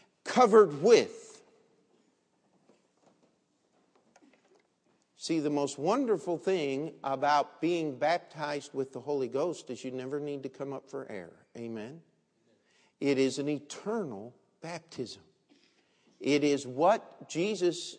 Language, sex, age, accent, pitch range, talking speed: English, male, 50-69, American, 135-175 Hz, 110 wpm